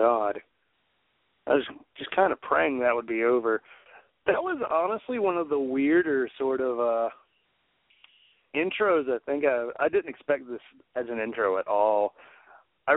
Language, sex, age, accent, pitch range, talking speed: English, male, 40-59, American, 120-175 Hz, 160 wpm